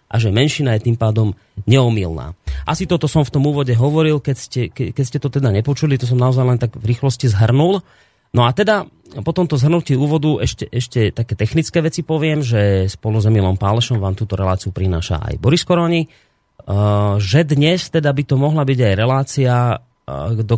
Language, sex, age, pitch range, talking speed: Slovak, male, 30-49, 110-135 Hz, 185 wpm